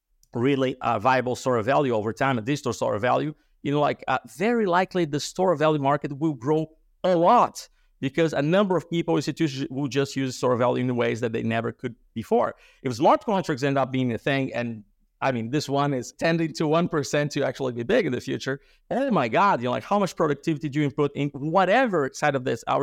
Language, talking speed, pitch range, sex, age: English, 240 wpm, 130-165 Hz, male, 50-69